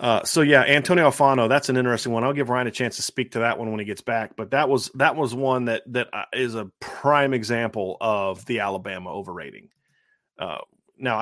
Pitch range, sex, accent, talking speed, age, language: 110-130 Hz, male, American, 220 wpm, 30-49, English